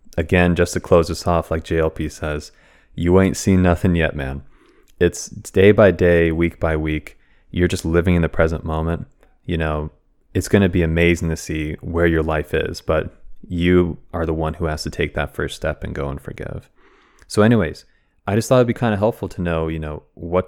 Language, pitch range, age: English, 80-90 Hz, 20-39